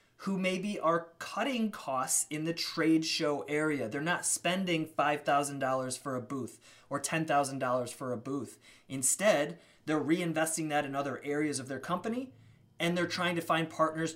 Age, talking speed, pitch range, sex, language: 20-39, 160 wpm, 140-170 Hz, male, English